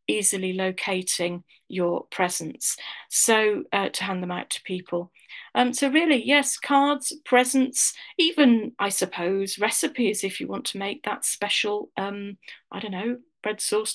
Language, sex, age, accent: English, female, 40-59, British